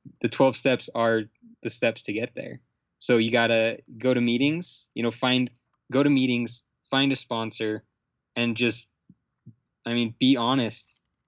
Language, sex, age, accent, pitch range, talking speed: English, male, 20-39, American, 110-130 Hz, 165 wpm